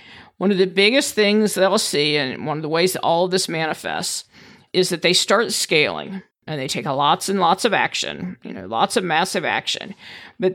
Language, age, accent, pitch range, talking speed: English, 50-69, American, 160-200 Hz, 210 wpm